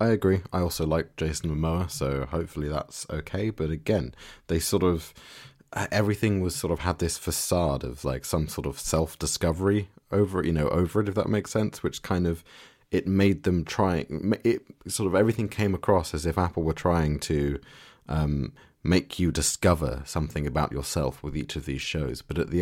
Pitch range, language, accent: 75-90 Hz, English, British